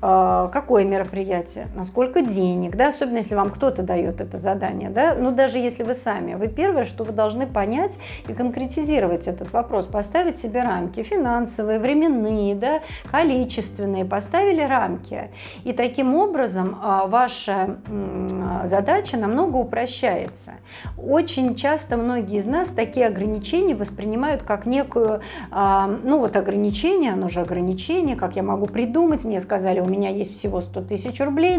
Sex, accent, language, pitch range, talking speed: female, native, Russian, 195-260 Hz, 145 wpm